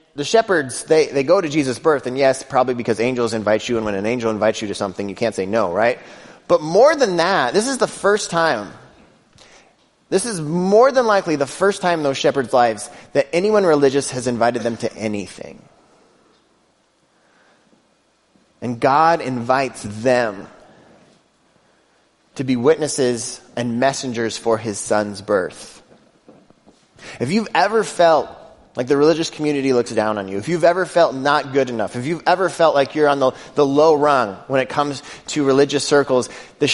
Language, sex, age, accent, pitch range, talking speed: English, male, 30-49, American, 120-155 Hz, 175 wpm